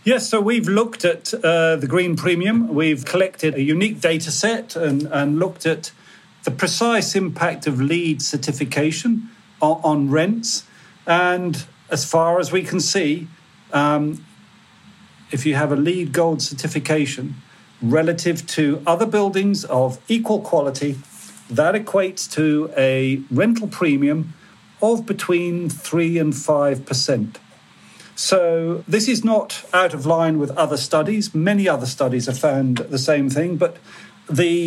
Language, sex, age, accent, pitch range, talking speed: English, male, 40-59, British, 150-195 Hz, 140 wpm